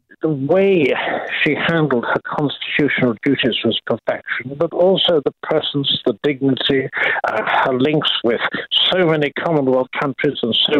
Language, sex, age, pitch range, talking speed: English, male, 60-79, 125-170 Hz, 140 wpm